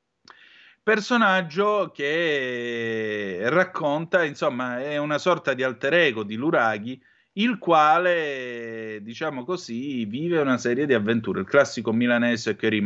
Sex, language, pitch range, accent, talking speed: male, Italian, 110-150 Hz, native, 115 wpm